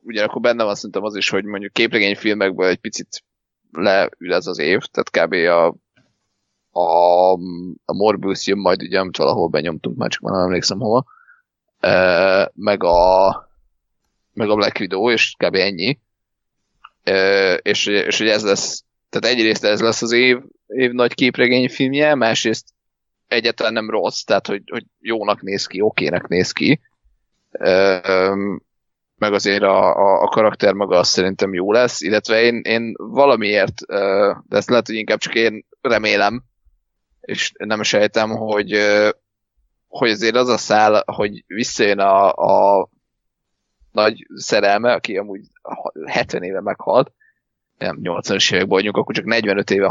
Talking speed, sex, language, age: 145 wpm, male, Hungarian, 20-39